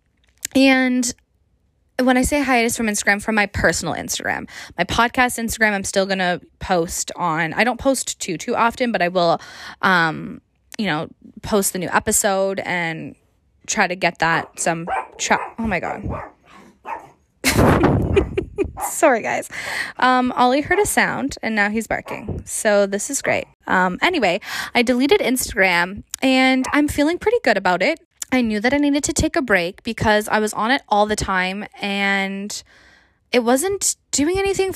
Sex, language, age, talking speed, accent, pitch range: female, English, 20-39, 165 wpm, American, 185-255 Hz